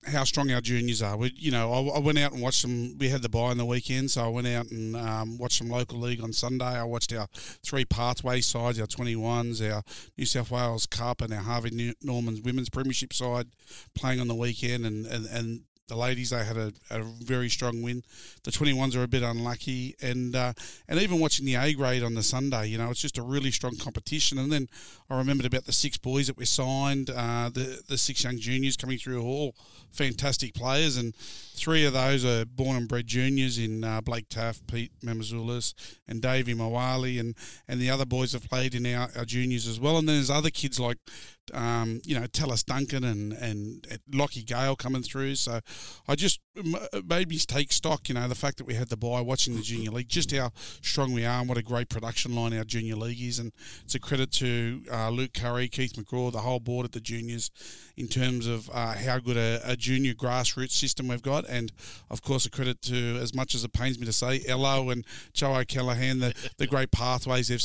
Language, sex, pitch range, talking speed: English, male, 115-130 Hz, 225 wpm